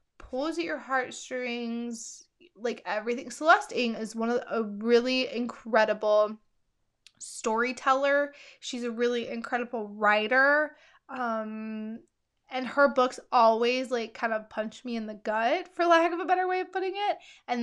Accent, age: American, 20-39